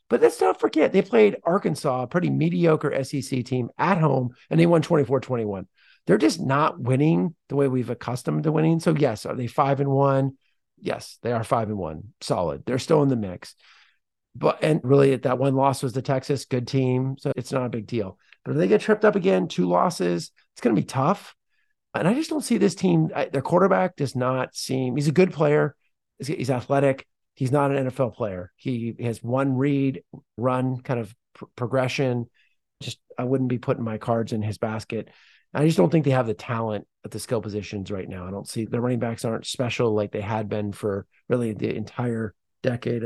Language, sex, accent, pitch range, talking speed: English, male, American, 115-140 Hz, 210 wpm